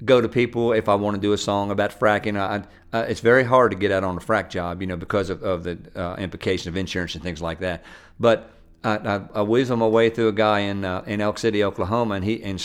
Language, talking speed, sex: English, 275 wpm, male